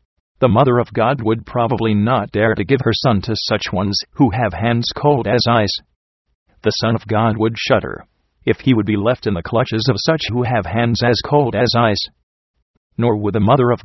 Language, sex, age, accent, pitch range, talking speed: English, male, 50-69, American, 95-120 Hz, 210 wpm